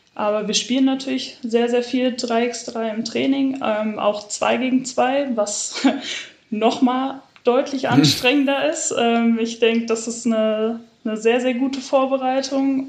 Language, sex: German, female